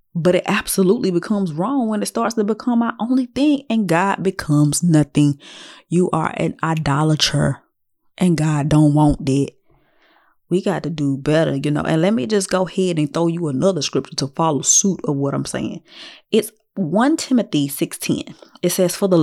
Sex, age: female, 20-39